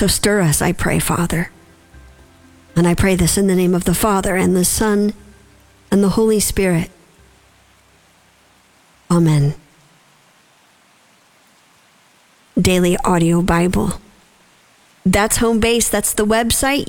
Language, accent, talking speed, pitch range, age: English, American, 115 wpm, 170-220 Hz, 50-69